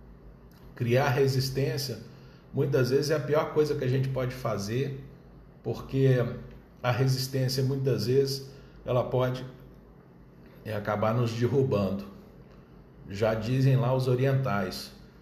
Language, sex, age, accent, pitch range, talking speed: Portuguese, male, 50-69, Brazilian, 110-140 Hz, 110 wpm